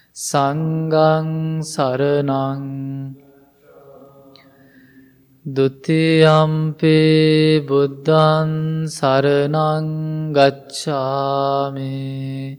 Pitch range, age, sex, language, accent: 135-155 Hz, 20-39, male, English, Indian